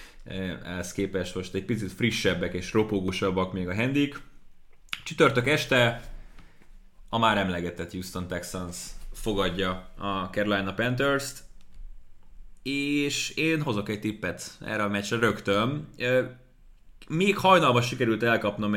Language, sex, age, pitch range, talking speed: Hungarian, male, 20-39, 95-125 Hz, 110 wpm